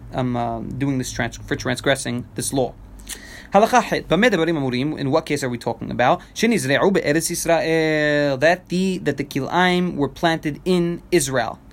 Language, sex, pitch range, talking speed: English, male, 135-180 Hz, 120 wpm